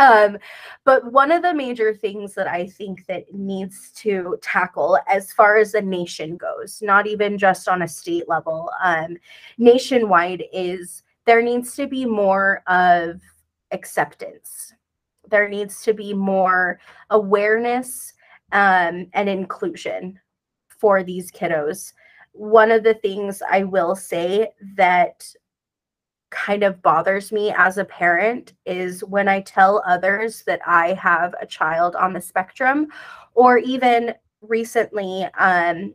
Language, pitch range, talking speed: English, 185-230 Hz, 135 wpm